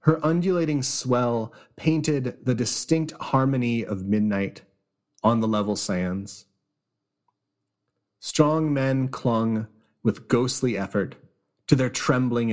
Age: 30-49